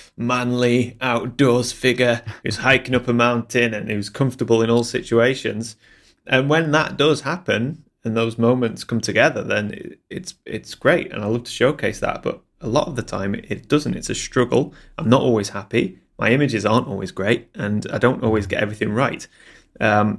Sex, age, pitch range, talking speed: male, 30-49, 110-125 Hz, 185 wpm